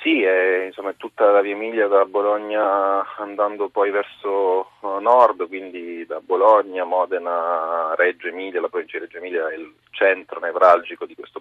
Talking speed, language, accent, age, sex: 165 wpm, Italian, native, 30-49, male